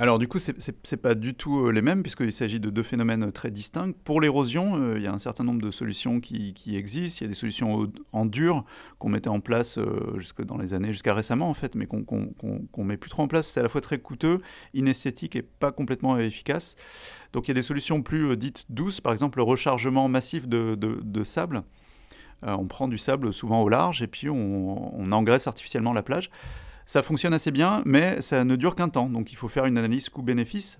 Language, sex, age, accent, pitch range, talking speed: French, male, 30-49, French, 110-145 Hz, 230 wpm